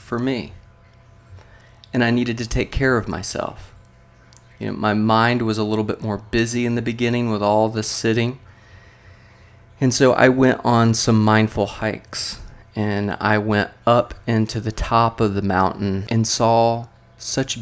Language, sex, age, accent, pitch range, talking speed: English, male, 30-49, American, 105-115 Hz, 165 wpm